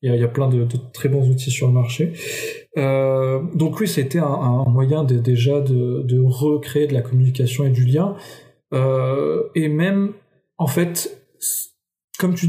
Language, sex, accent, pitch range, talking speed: French, male, French, 130-155 Hz, 185 wpm